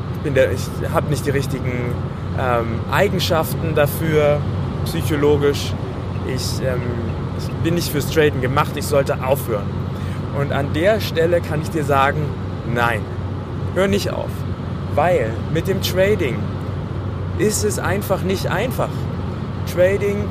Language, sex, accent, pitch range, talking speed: German, male, German, 110-145 Hz, 125 wpm